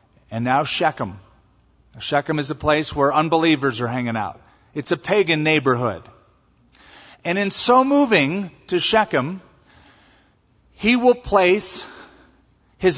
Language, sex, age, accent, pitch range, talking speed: English, male, 40-59, American, 125-180 Hz, 120 wpm